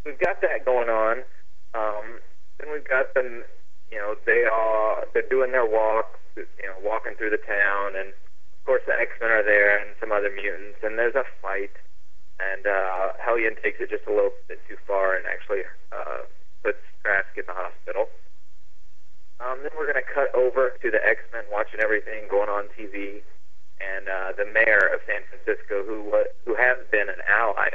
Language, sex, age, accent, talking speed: English, male, 30-49, American, 190 wpm